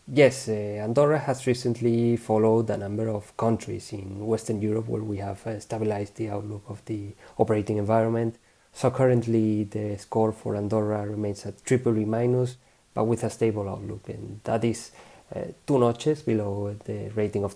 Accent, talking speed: Spanish, 170 wpm